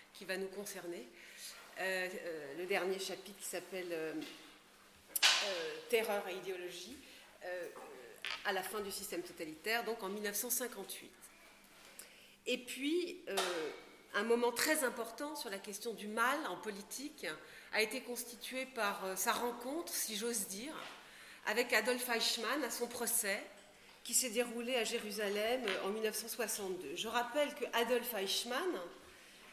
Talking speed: 135 wpm